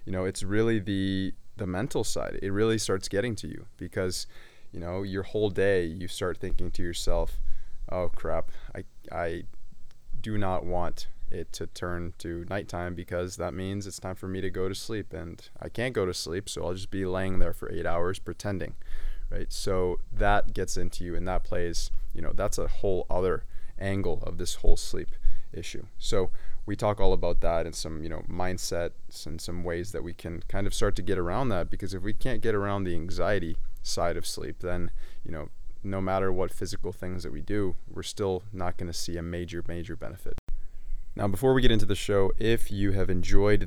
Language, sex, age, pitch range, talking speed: English, male, 20-39, 85-100 Hz, 210 wpm